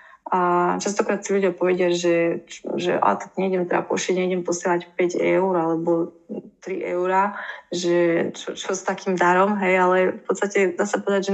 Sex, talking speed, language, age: female, 180 wpm, Slovak, 20-39